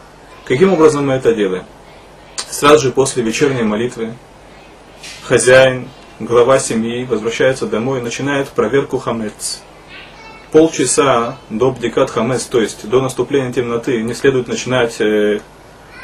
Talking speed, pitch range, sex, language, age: 115 wpm, 115-140 Hz, male, Russian, 20-39